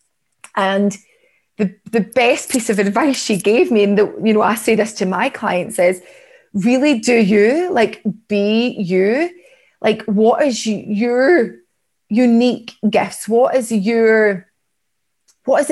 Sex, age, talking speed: female, 30-49, 145 wpm